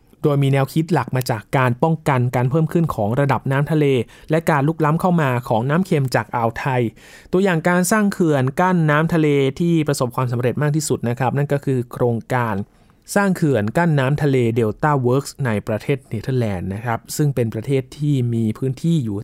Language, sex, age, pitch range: Thai, male, 20-39, 125-160 Hz